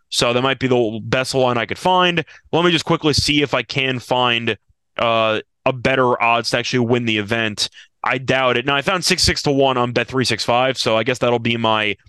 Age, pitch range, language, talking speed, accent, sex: 20-39, 125-170 Hz, English, 235 wpm, American, male